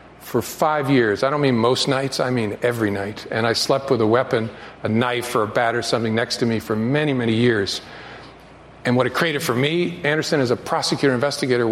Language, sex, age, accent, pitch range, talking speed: English, male, 50-69, American, 125-165 Hz, 220 wpm